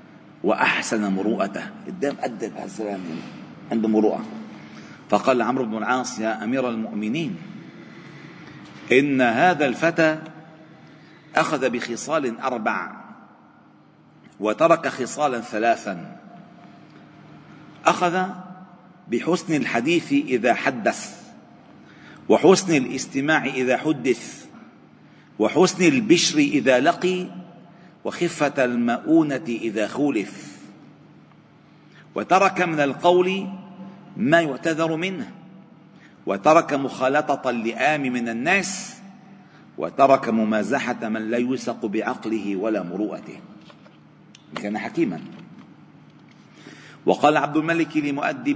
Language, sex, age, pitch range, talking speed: Arabic, male, 40-59, 120-180 Hz, 80 wpm